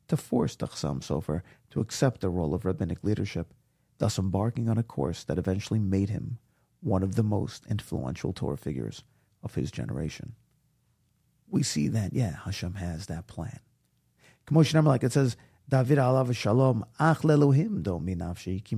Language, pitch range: English, 100-145 Hz